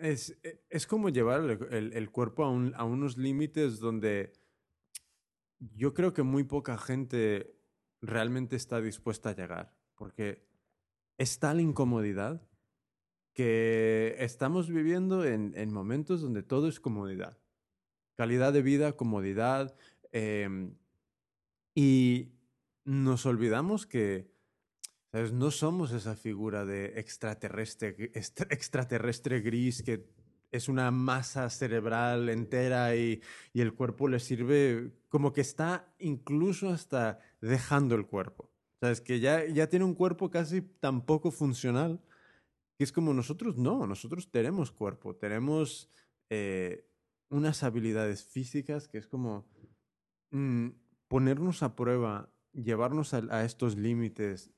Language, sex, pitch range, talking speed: Spanish, male, 110-145 Hz, 120 wpm